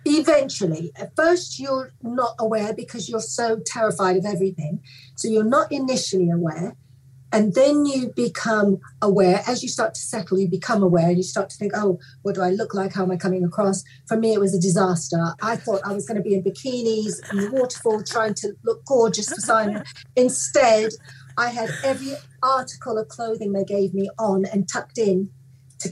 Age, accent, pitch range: 40-59, British, 185-235 Hz